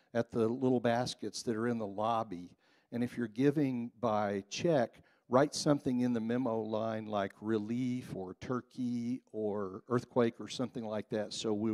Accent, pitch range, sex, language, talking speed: American, 110-130 Hz, male, English, 170 wpm